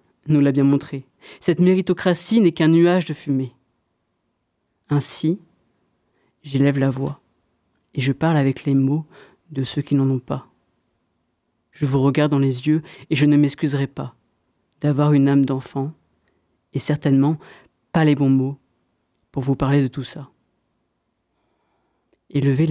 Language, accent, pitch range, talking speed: French, French, 135-155 Hz, 145 wpm